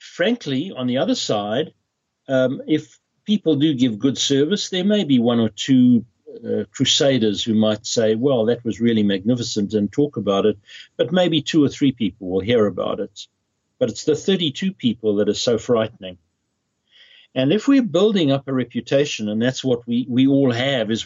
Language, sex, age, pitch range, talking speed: English, male, 60-79, 110-145 Hz, 190 wpm